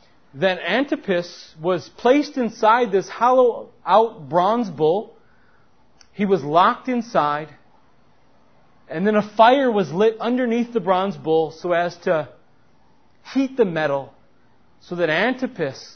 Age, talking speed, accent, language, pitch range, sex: 40-59, 120 wpm, American, English, 160-250 Hz, male